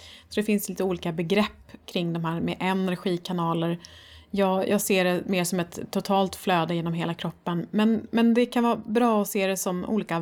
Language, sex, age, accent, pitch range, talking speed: Swedish, female, 30-49, native, 180-220 Hz, 200 wpm